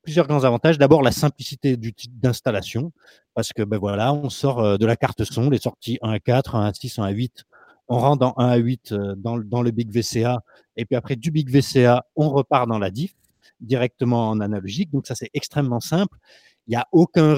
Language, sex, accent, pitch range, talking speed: French, male, French, 110-140 Hz, 215 wpm